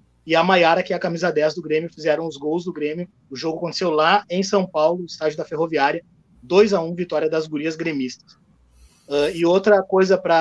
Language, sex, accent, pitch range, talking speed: Portuguese, male, Brazilian, 150-175 Hz, 195 wpm